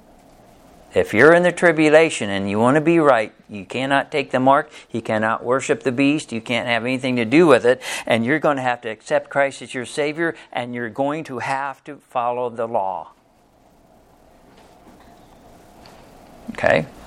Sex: male